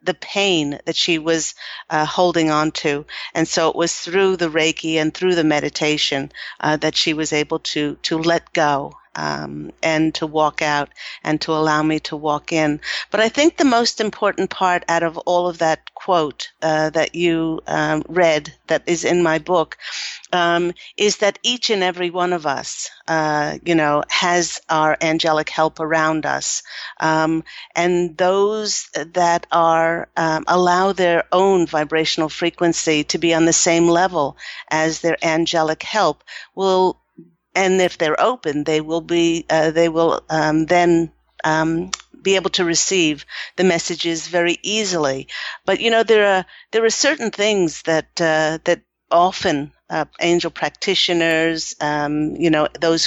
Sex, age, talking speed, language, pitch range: female, 50-69, 165 wpm, English, 155-180 Hz